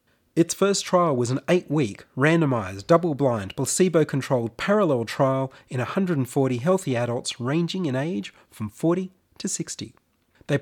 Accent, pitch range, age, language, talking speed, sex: Australian, 115-165 Hz, 30-49, English, 130 wpm, male